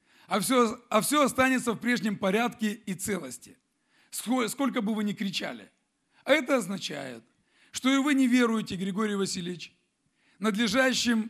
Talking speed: 140 wpm